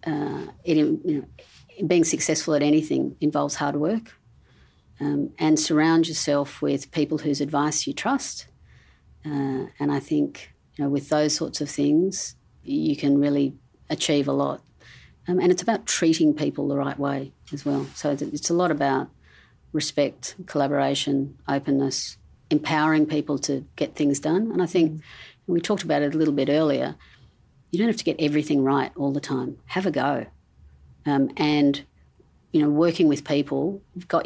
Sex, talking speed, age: female, 160 wpm, 50-69